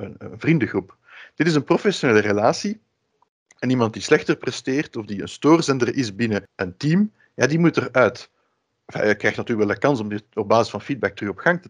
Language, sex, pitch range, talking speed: Dutch, male, 115-155 Hz, 210 wpm